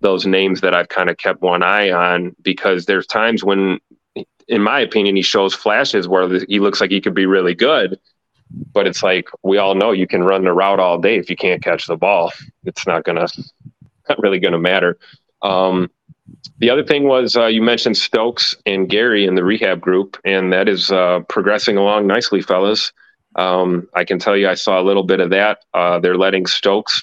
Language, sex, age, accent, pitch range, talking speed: English, male, 30-49, American, 90-100 Hz, 215 wpm